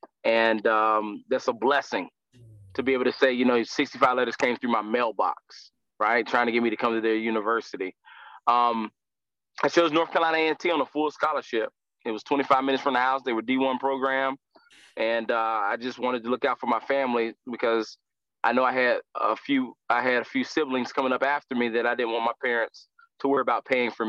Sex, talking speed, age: male, 215 wpm, 20-39